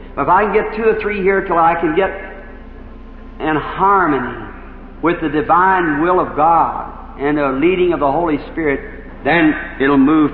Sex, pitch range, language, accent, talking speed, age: male, 135-190 Hz, English, American, 175 wpm, 50-69